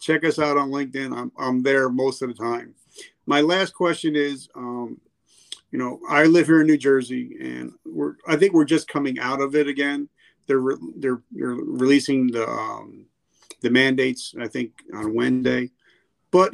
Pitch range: 125-150 Hz